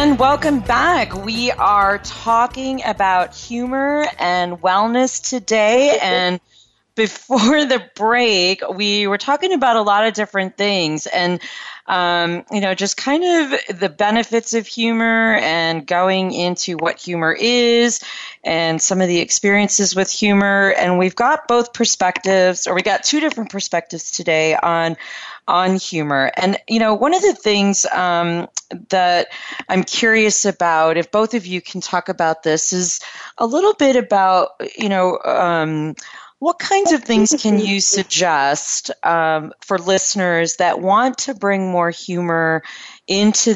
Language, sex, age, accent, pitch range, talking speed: English, female, 30-49, American, 170-230 Hz, 145 wpm